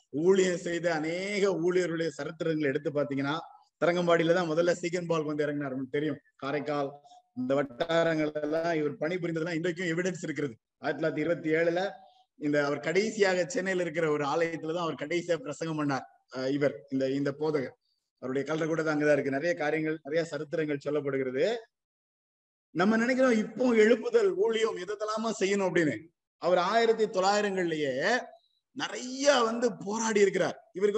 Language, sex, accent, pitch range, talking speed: Tamil, male, native, 155-220 Hz, 140 wpm